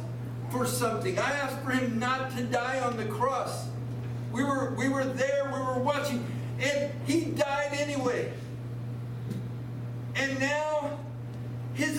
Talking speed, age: 135 wpm, 50-69